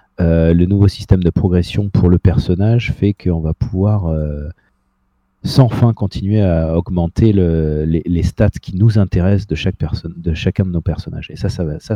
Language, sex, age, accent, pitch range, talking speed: French, male, 40-59, French, 85-105 Hz, 185 wpm